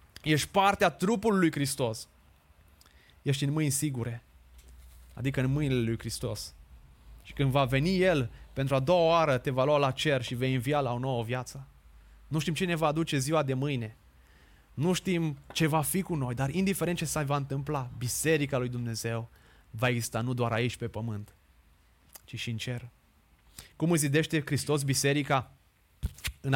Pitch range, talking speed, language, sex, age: 115-150 Hz, 175 wpm, Romanian, male, 20-39